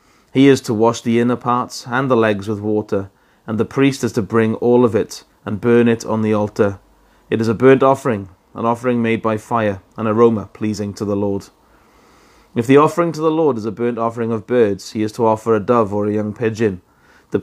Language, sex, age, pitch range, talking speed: English, male, 30-49, 105-125 Hz, 225 wpm